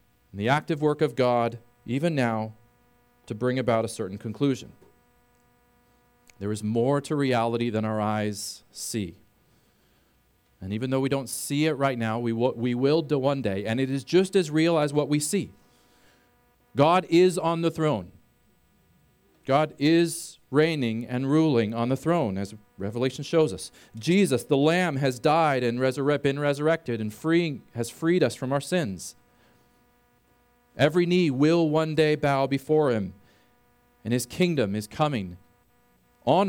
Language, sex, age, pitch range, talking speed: English, male, 40-59, 115-150 Hz, 160 wpm